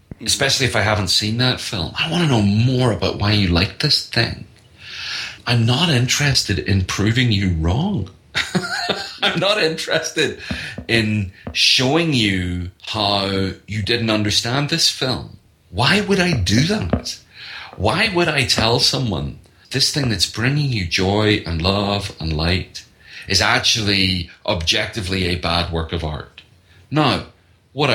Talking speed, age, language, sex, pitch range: 145 wpm, 40-59, English, male, 90-115 Hz